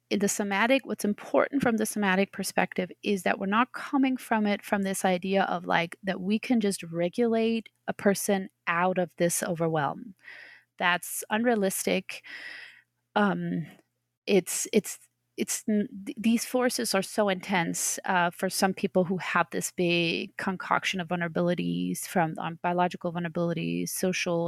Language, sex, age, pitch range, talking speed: English, female, 30-49, 170-215 Hz, 145 wpm